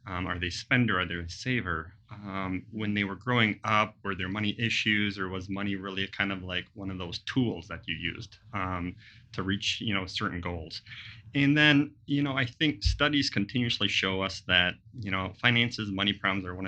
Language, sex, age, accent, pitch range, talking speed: English, male, 30-49, American, 95-115 Hz, 210 wpm